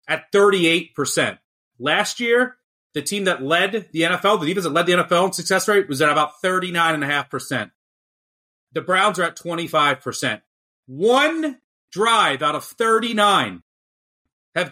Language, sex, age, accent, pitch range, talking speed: English, male, 30-49, American, 130-175 Hz, 140 wpm